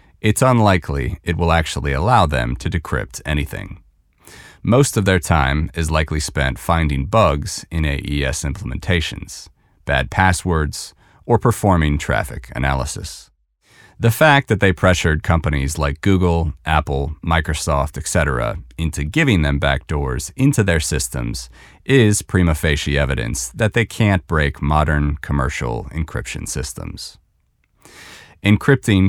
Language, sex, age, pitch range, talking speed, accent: English, male, 30-49, 70-100 Hz, 120 wpm, American